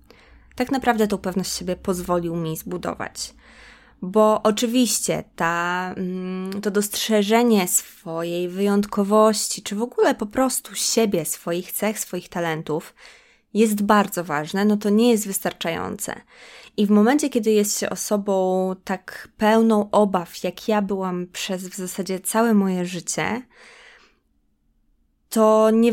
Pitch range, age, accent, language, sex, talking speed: 185-230 Hz, 20-39, native, Polish, female, 125 wpm